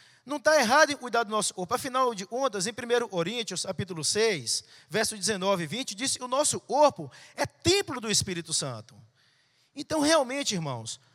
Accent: Brazilian